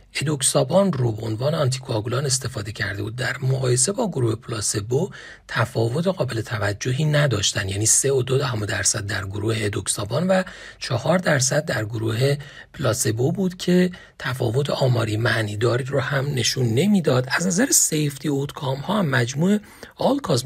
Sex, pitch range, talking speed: male, 115-165 Hz, 155 wpm